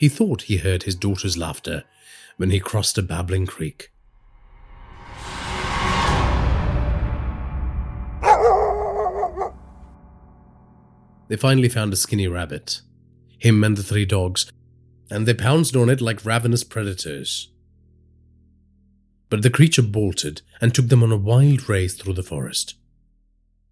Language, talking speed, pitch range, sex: English, 115 wpm, 85-120 Hz, male